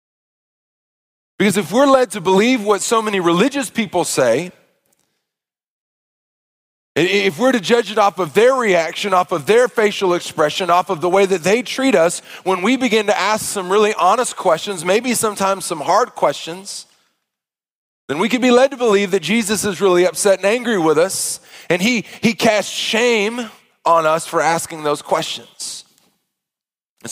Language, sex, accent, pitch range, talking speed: English, male, American, 150-205 Hz, 170 wpm